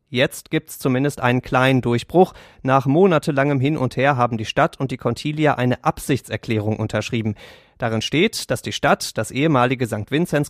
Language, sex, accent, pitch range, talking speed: German, male, German, 115-150 Hz, 165 wpm